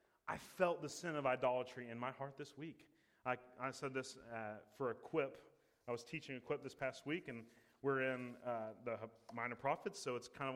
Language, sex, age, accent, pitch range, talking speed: English, male, 30-49, American, 125-160 Hz, 215 wpm